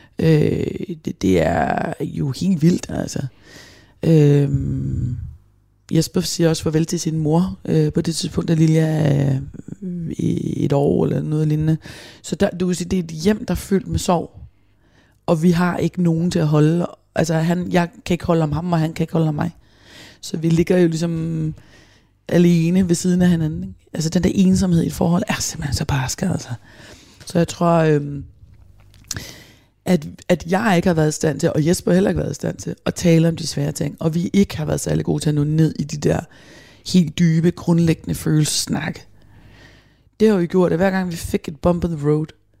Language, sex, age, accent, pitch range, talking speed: Danish, female, 30-49, native, 145-175 Hz, 210 wpm